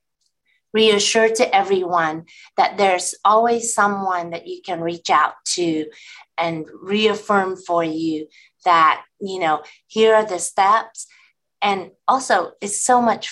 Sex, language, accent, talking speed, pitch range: female, English, American, 130 wpm, 175-215 Hz